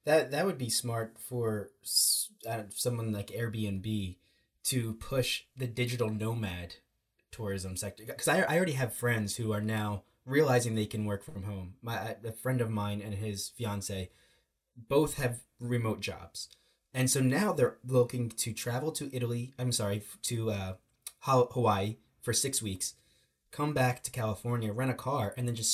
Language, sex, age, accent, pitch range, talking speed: English, male, 20-39, American, 105-130 Hz, 170 wpm